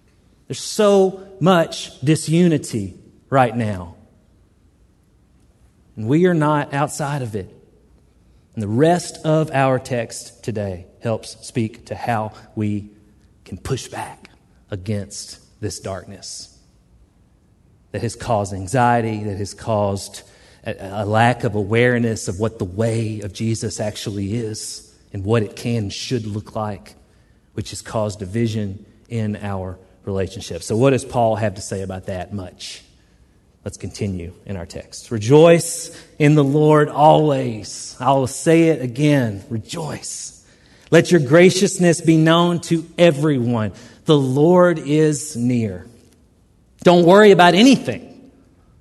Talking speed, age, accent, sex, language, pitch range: 130 wpm, 40-59, American, male, English, 100-145 Hz